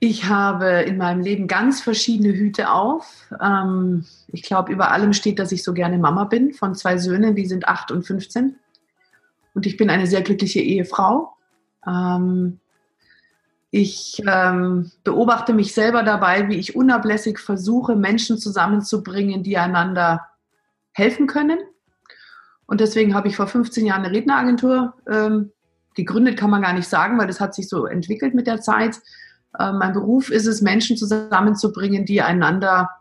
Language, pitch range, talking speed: German, 180-215 Hz, 150 wpm